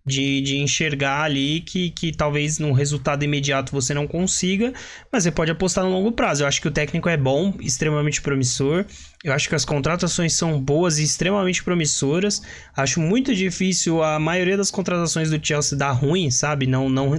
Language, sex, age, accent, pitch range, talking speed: Portuguese, male, 20-39, Brazilian, 135-170 Hz, 185 wpm